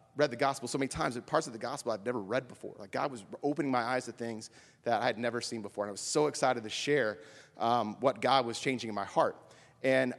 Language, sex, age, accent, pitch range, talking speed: English, male, 30-49, American, 120-145 Hz, 265 wpm